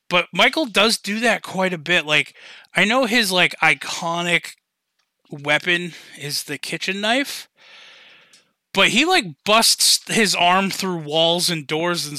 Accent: American